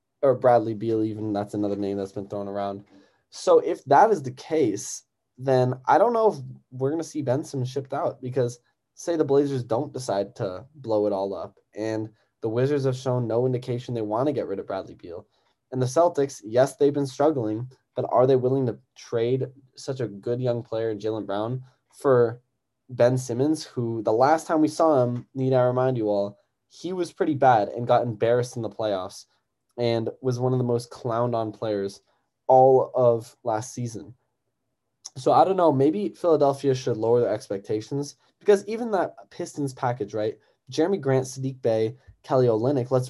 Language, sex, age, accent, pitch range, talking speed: English, male, 10-29, American, 115-135 Hz, 190 wpm